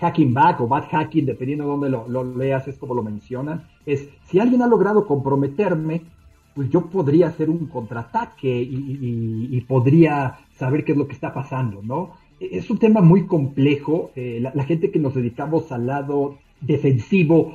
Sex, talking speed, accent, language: male, 180 wpm, Mexican, Spanish